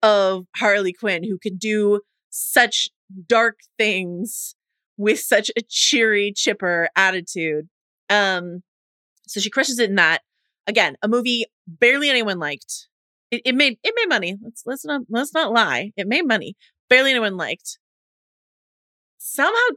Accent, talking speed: American, 145 wpm